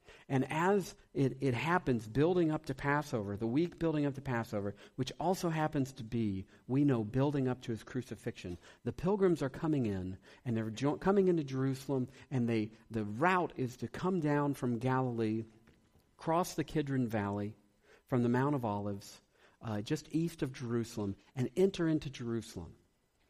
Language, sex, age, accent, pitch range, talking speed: English, male, 50-69, American, 115-165 Hz, 170 wpm